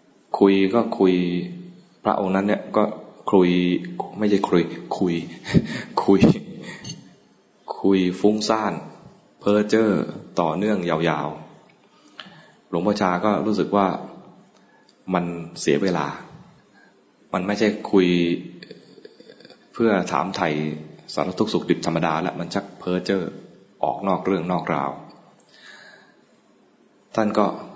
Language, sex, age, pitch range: English, male, 20-39, 85-100 Hz